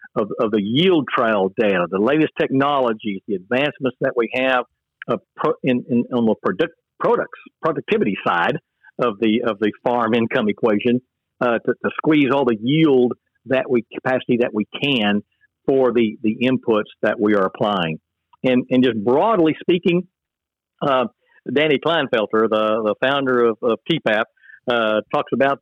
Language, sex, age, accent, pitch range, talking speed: English, male, 50-69, American, 110-140 Hz, 160 wpm